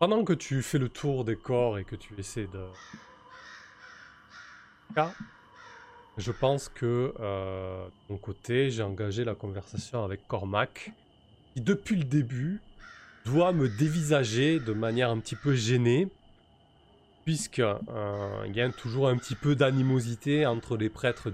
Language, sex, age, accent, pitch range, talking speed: French, male, 20-39, French, 105-140 Hz, 140 wpm